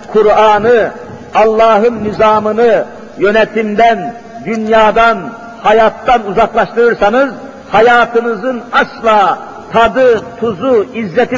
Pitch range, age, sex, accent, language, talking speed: 200-230 Hz, 50-69, male, native, Turkish, 65 wpm